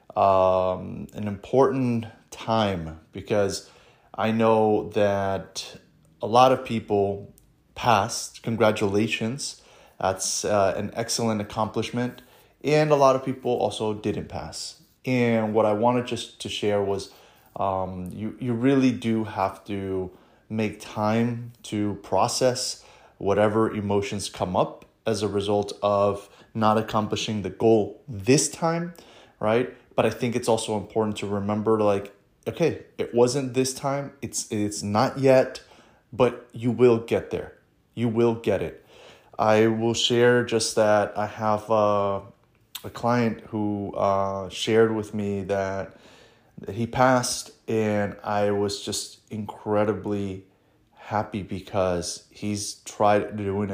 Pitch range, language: 100-115 Hz, English